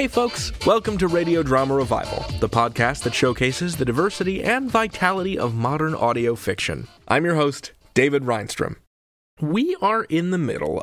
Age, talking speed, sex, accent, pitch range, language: 30-49, 160 wpm, male, American, 115-170 Hz, English